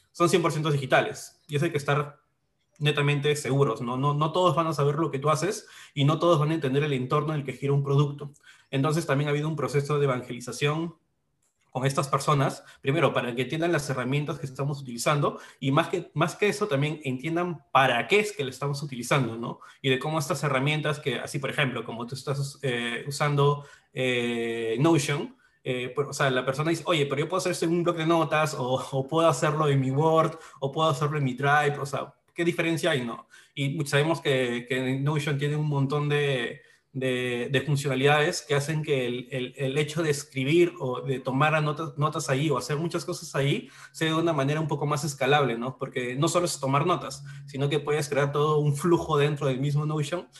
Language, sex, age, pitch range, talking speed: Spanish, male, 20-39, 135-160 Hz, 215 wpm